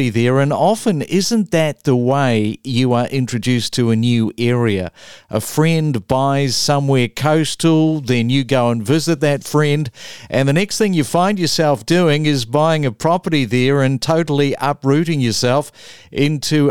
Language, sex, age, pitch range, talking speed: English, male, 50-69, 130-160 Hz, 160 wpm